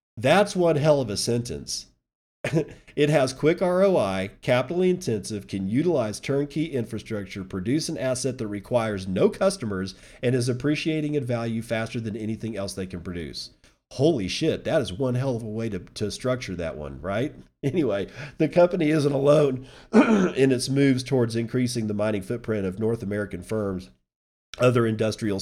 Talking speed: 165 wpm